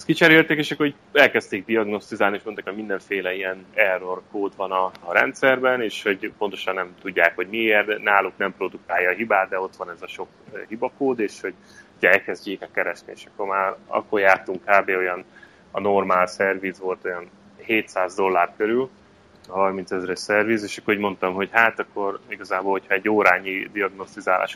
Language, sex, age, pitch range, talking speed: Hungarian, male, 30-49, 90-105 Hz, 175 wpm